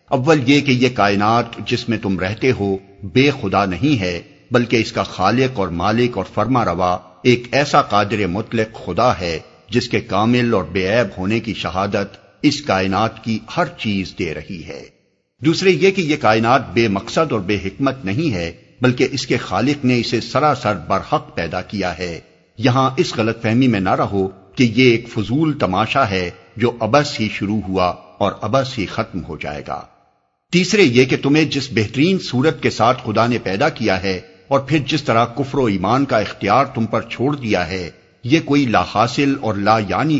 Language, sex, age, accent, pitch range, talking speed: English, male, 60-79, Indian, 100-130 Hz, 185 wpm